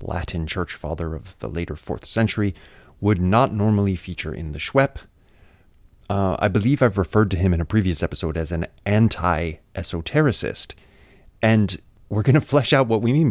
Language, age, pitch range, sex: English, 30-49, 85-105 Hz, male